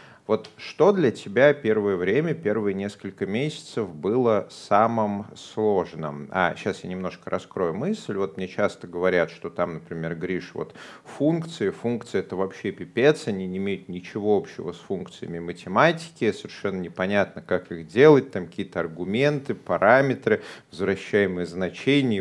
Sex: male